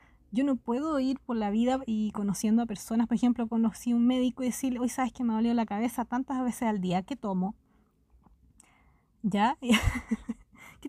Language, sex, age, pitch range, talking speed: Spanish, female, 20-39, 205-250 Hz, 200 wpm